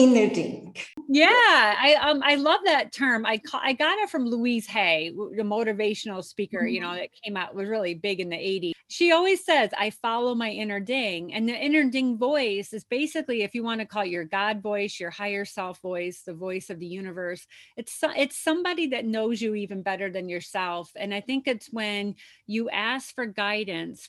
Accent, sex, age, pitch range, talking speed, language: American, female, 30-49, 190-240 Hz, 210 wpm, English